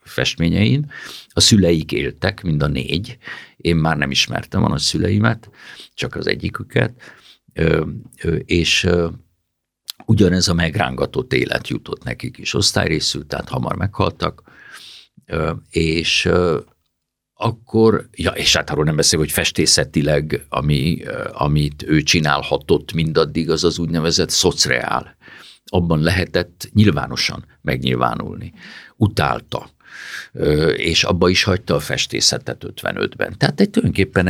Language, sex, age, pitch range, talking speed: Hungarian, male, 60-79, 80-105 Hz, 110 wpm